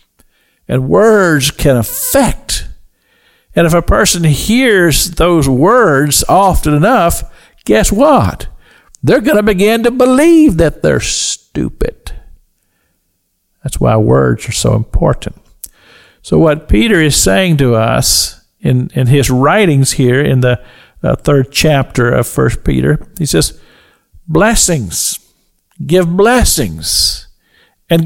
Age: 50-69